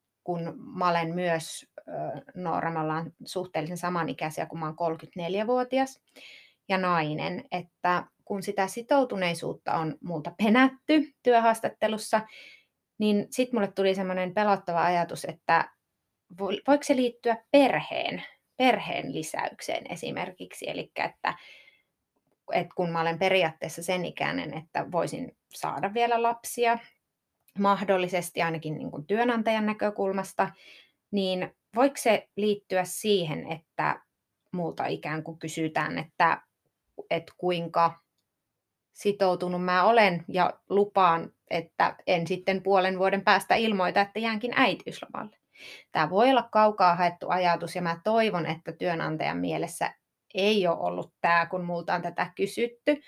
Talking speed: 115 wpm